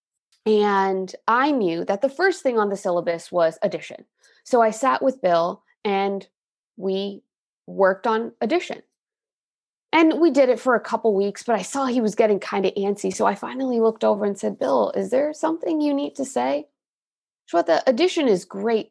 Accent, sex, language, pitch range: American, female, English, 195-275 Hz